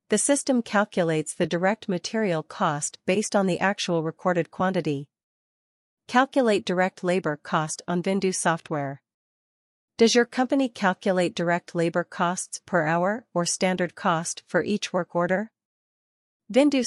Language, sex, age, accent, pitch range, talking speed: English, female, 40-59, American, 165-205 Hz, 130 wpm